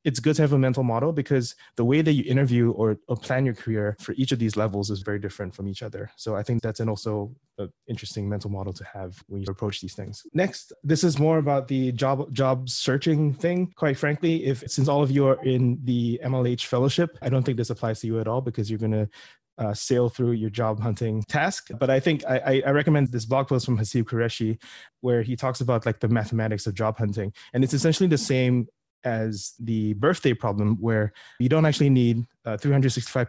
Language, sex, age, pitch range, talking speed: English, male, 20-39, 110-135 Hz, 225 wpm